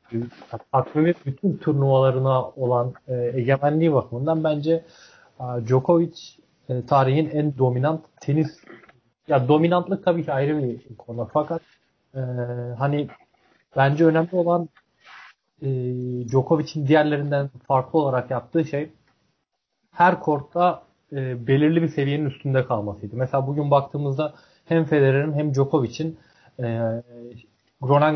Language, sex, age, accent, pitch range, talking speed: Turkish, male, 30-49, native, 130-155 Hz, 105 wpm